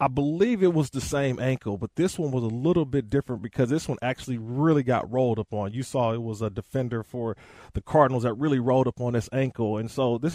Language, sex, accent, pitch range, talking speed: English, male, American, 115-155 Hz, 250 wpm